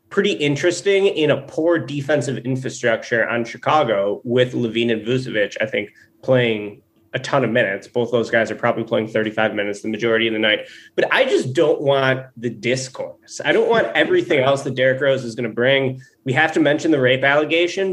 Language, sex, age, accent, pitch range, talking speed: English, male, 20-39, American, 120-155 Hz, 200 wpm